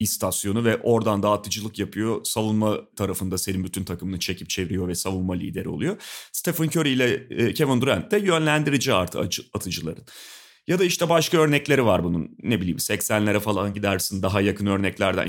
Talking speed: 160 wpm